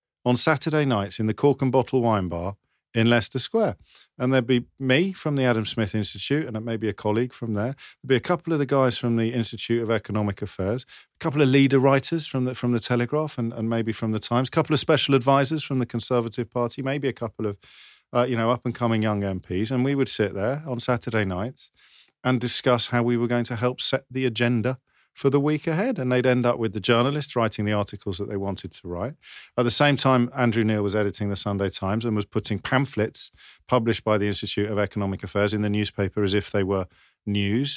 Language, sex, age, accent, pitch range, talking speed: English, male, 40-59, British, 105-125 Hz, 230 wpm